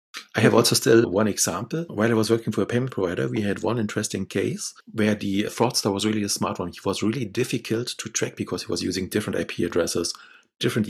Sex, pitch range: male, 90-110 Hz